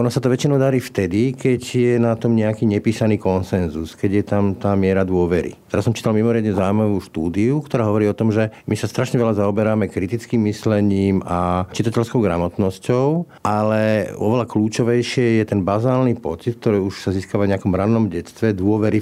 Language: Slovak